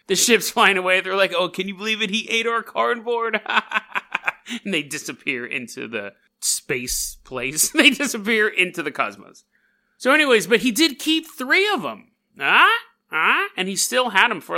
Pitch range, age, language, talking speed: 160-225 Hz, 30-49, English, 175 wpm